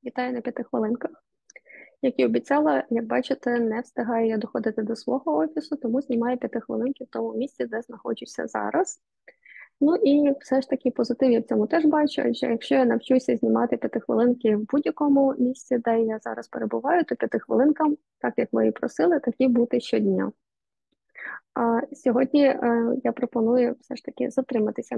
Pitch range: 235-270 Hz